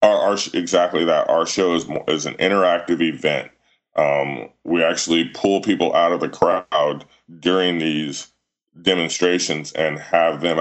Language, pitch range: English, 75-90 Hz